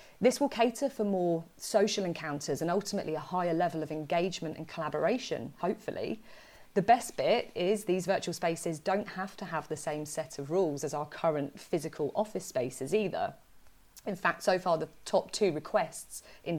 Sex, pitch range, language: female, 155-190 Hz, English